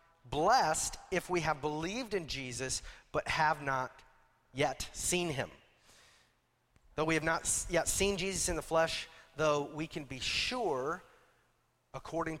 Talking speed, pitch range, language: 140 wpm, 125-160 Hz, English